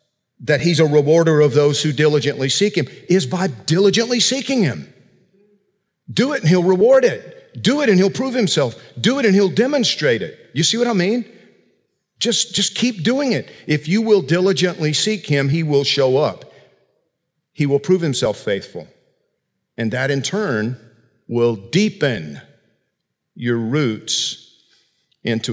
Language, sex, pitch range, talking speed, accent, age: English, male, 125-185 Hz, 160 wpm, American, 50-69